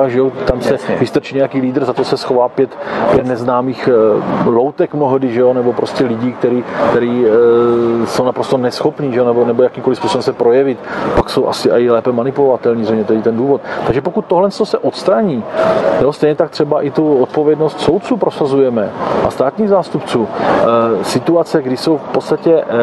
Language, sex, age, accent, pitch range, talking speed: Czech, male, 40-59, native, 115-145 Hz, 175 wpm